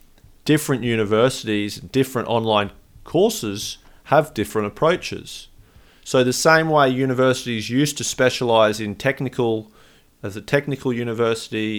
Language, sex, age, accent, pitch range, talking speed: English, male, 30-49, Australian, 110-130 Hz, 110 wpm